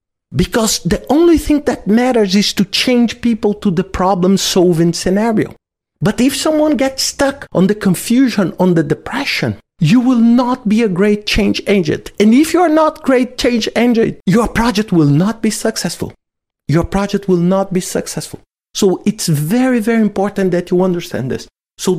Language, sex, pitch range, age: English, male, 170-230 Hz, 50-69